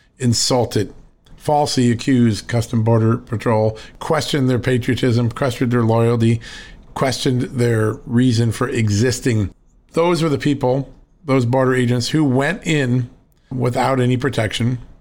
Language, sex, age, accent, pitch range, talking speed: English, male, 40-59, American, 115-135 Hz, 120 wpm